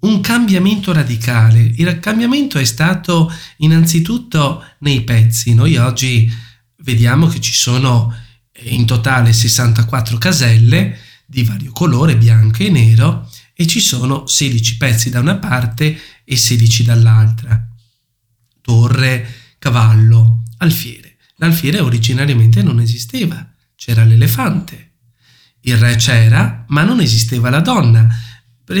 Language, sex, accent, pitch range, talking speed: Italian, male, native, 115-160 Hz, 115 wpm